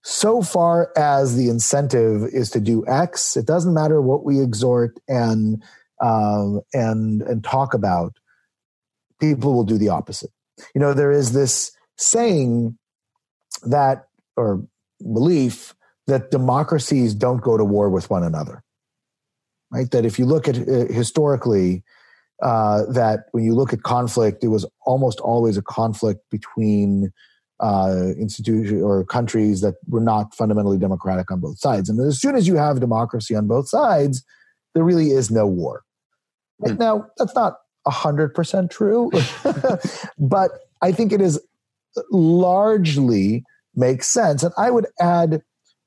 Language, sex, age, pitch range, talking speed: English, male, 30-49, 110-155 Hz, 145 wpm